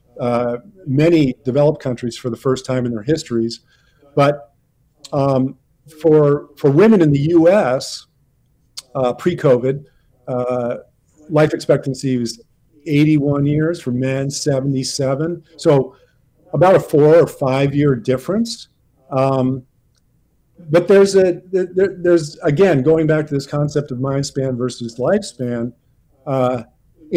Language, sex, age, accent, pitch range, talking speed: English, male, 50-69, American, 125-150 Hz, 125 wpm